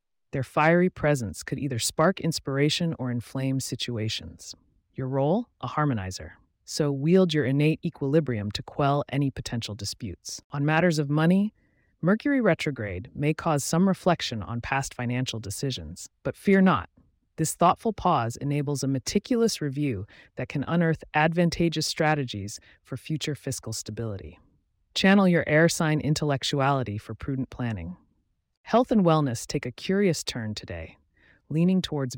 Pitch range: 115-160 Hz